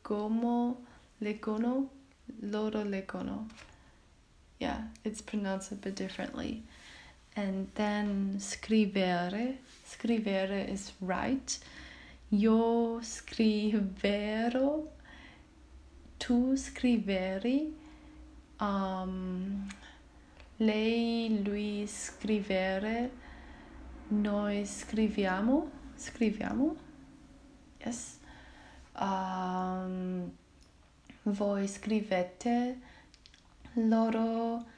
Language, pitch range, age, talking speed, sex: English, 195-235 Hz, 20-39, 55 wpm, female